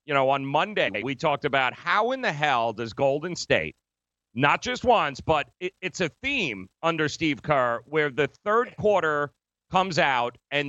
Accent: American